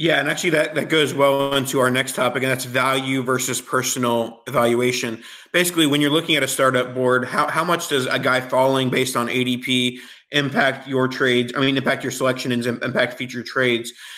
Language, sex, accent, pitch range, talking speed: English, male, American, 125-145 Hz, 200 wpm